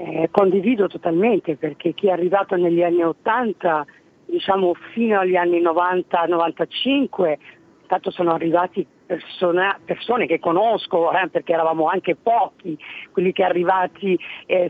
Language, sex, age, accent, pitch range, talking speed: Italian, female, 50-69, native, 175-230 Hz, 125 wpm